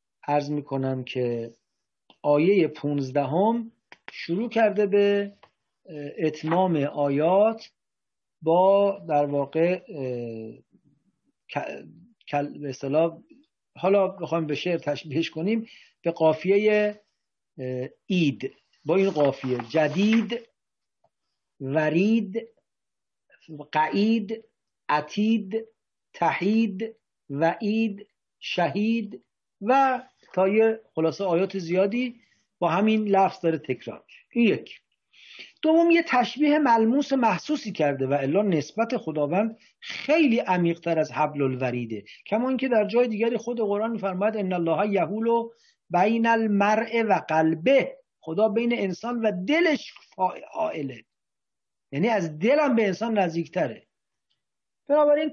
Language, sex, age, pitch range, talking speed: English, male, 50-69, 155-225 Hz, 95 wpm